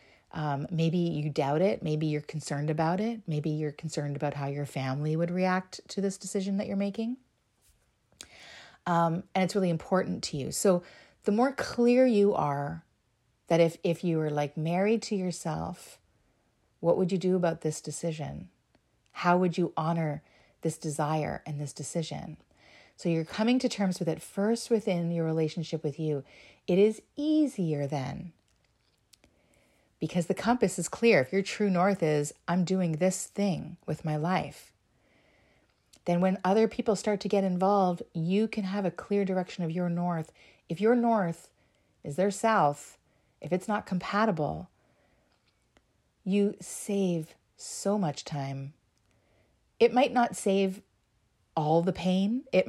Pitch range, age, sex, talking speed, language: 155-195 Hz, 40-59, female, 155 wpm, English